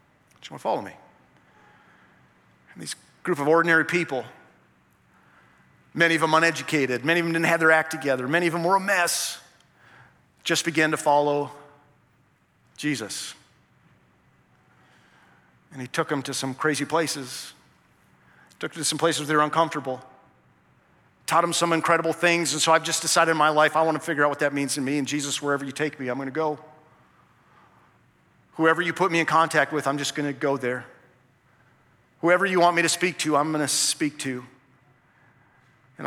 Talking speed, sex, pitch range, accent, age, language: 185 wpm, male, 130-160 Hz, American, 40-59, English